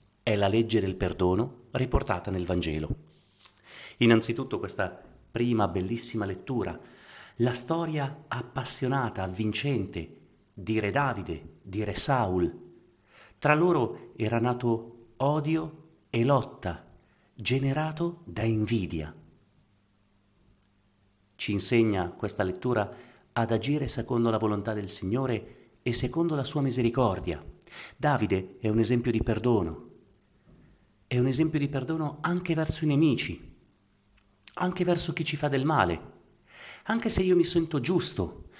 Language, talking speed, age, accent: Italian, 120 wpm, 40-59, native